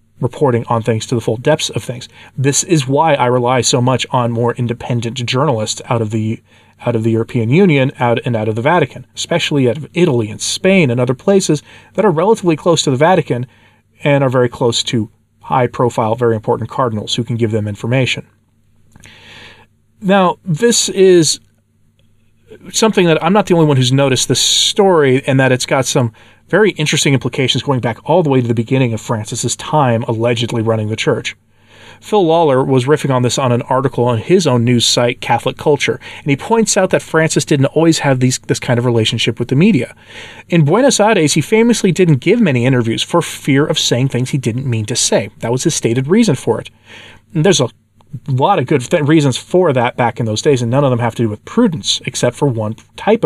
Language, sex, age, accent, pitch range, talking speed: English, male, 30-49, American, 115-150 Hz, 205 wpm